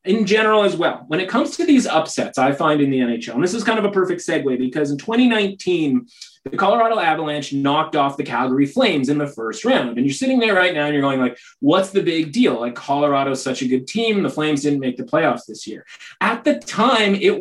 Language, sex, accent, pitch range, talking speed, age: English, male, American, 145-215 Hz, 240 wpm, 30-49